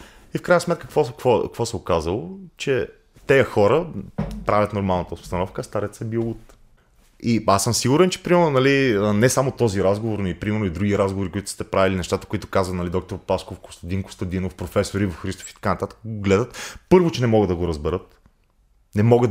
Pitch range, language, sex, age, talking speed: 95-120 Hz, Bulgarian, male, 30-49, 190 wpm